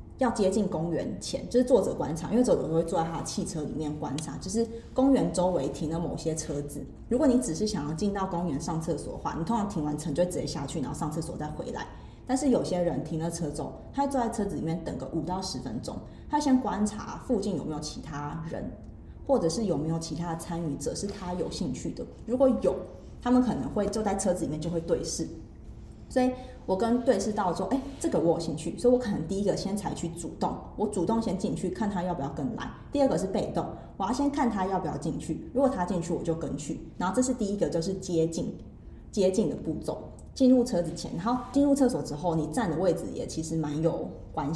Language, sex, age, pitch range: Chinese, female, 20-39, 165-230 Hz